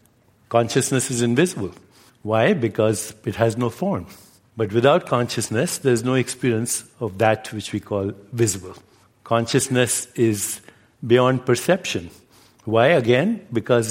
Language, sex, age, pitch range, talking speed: English, male, 60-79, 110-130 Hz, 120 wpm